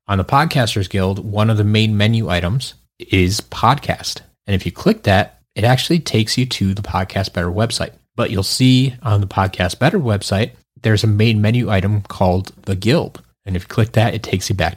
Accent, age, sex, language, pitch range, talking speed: American, 20-39, male, English, 100-120 Hz, 205 wpm